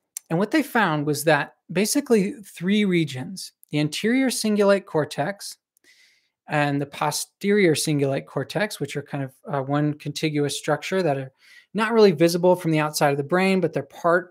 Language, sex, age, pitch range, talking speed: English, male, 20-39, 150-185 Hz, 170 wpm